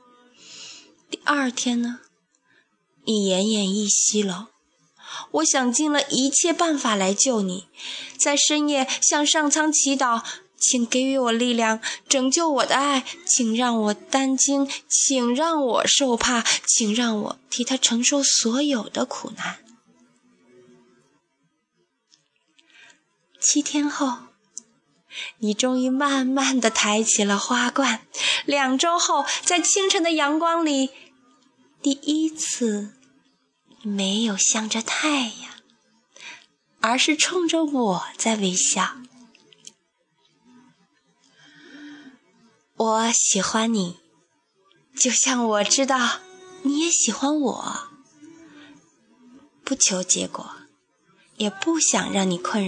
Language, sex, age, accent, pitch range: Chinese, female, 20-39, native, 225-295 Hz